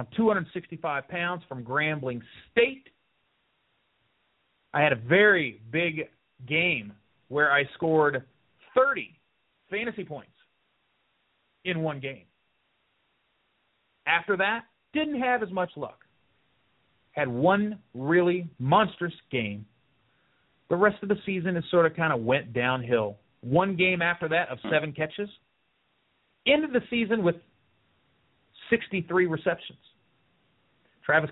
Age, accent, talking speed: 40-59, American, 120 wpm